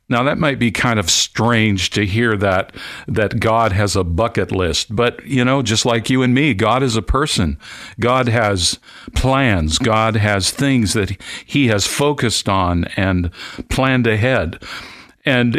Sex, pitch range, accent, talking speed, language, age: male, 100-125 Hz, American, 165 wpm, English, 60-79